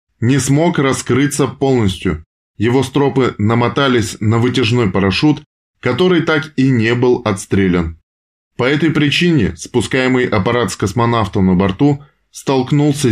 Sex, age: male, 20-39